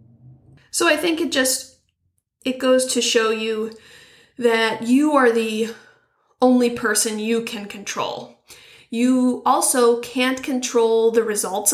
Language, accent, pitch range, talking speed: English, American, 205-255 Hz, 130 wpm